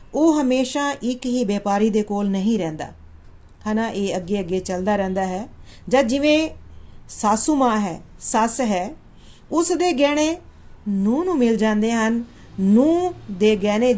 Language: Punjabi